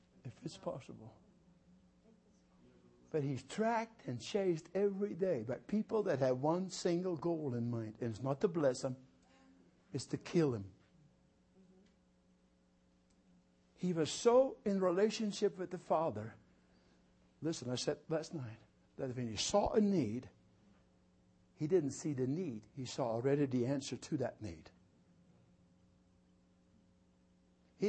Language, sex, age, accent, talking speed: English, male, 60-79, American, 135 wpm